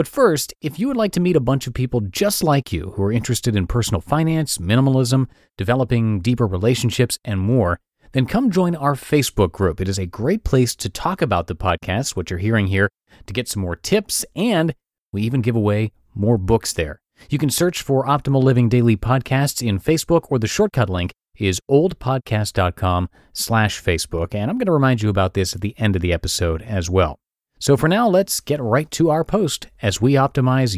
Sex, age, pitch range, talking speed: male, 30-49, 95-140 Hz, 205 wpm